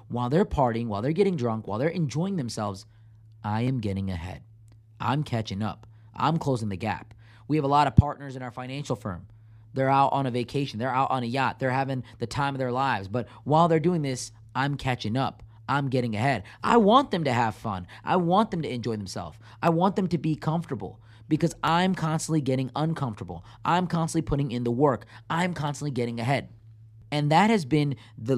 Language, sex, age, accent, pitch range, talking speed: English, male, 30-49, American, 110-150 Hz, 205 wpm